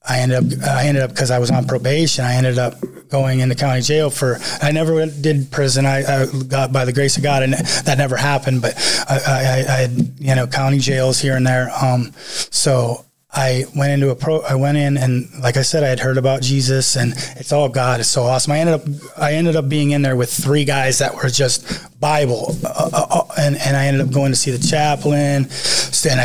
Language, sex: English, male